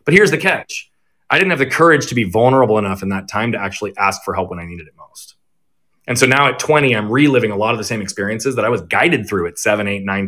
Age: 30-49